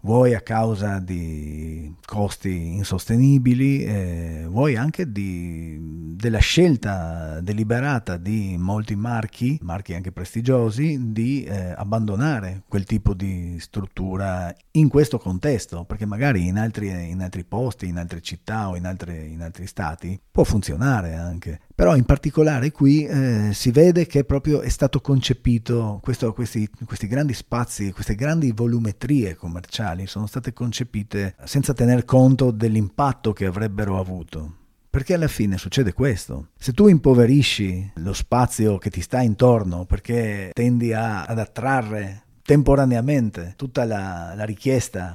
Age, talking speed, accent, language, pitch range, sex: 40-59, 135 wpm, native, Italian, 95-125 Hz, male